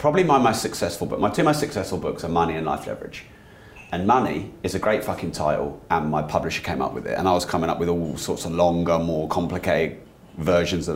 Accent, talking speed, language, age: British, 235 wpm, English, 30-49